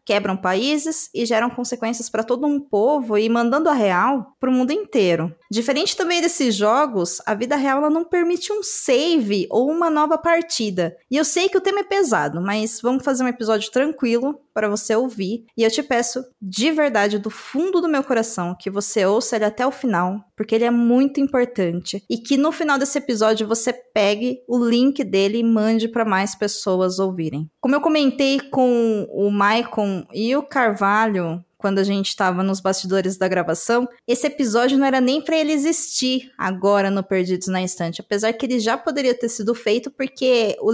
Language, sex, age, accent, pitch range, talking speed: Portuguese, female, 20-39, Brazilian, 210-280 Hz, 190 wpm